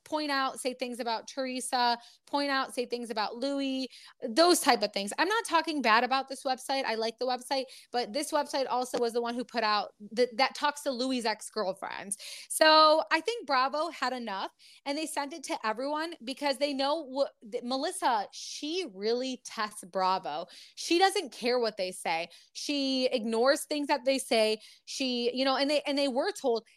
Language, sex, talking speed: English, female, 190 wpm